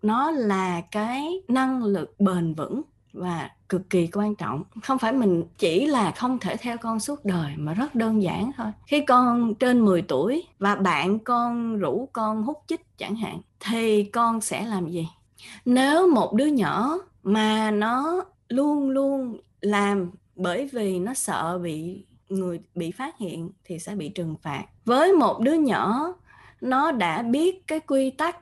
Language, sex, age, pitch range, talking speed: Vietnamese, female, 20-39, 185-260 Hz, 170 wpm